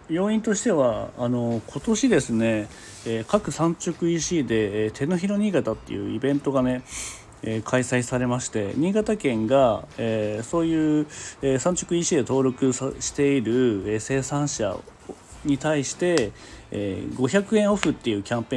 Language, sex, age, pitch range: Japanese, male, 40-59, 110-165 Hz